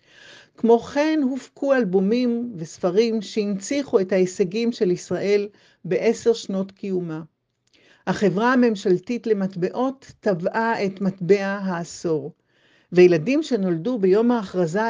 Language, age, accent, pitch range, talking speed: Hebrew, 50-69, native, 185-240 Hz, 95 wpm